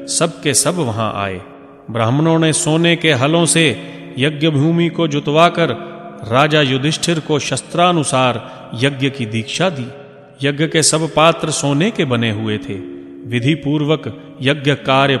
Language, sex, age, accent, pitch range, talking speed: Hindi, male, 30-49, native, 125-160 Hz, 140 wpm